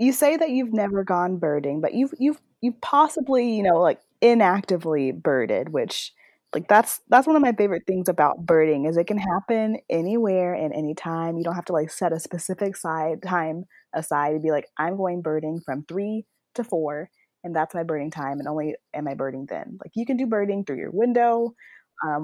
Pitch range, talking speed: 160-235 Hz, 205 wpm